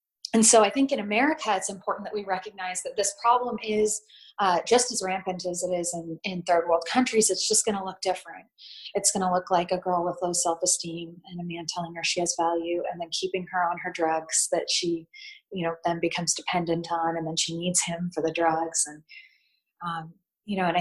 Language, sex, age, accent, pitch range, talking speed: English, female, 20-39, American, 170-210 Hz, 230 wpm